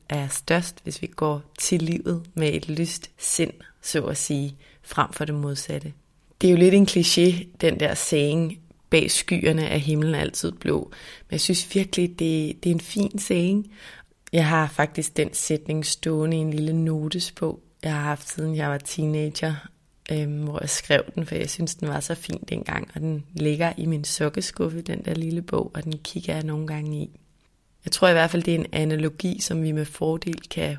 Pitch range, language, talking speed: 155-170 Hz, Danish, 205 wpm